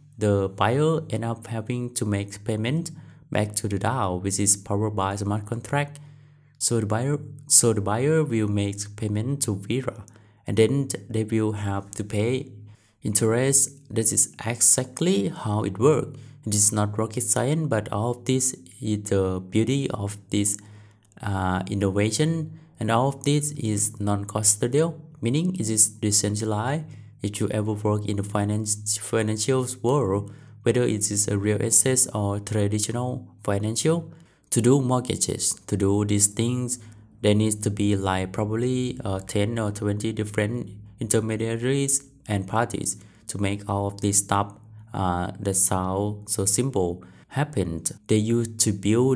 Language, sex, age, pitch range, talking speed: English, male, 20-39, 105-125 Hz, 150 wpm